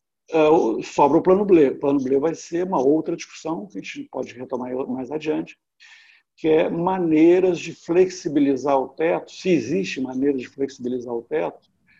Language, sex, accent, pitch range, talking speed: Portuguese, male, Brazilian, 135-170 Hz, 165 wpm